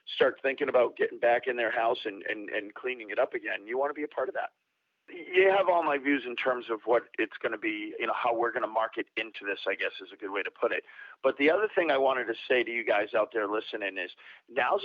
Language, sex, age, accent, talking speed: English, male, 40-59, American, 260 wpm